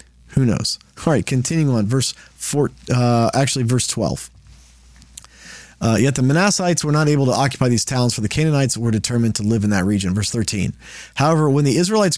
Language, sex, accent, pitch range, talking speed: English, male, American, 115-155 Hz, 190 wpm